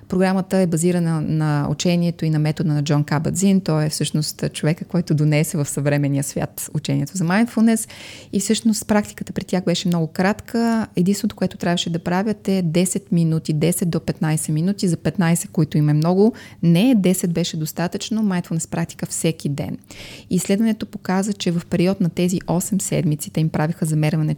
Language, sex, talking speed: Bulgarian, female, 170 wpm